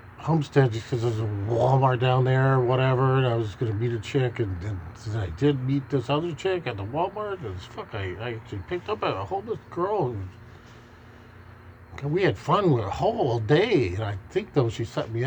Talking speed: 225 wpm